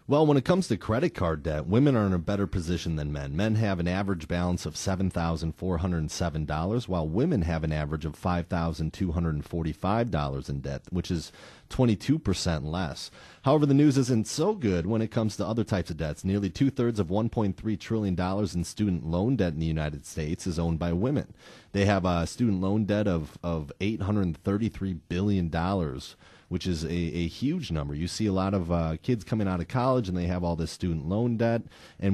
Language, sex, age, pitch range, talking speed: English, male, 30-49, 85-110 Hz, 195 wpm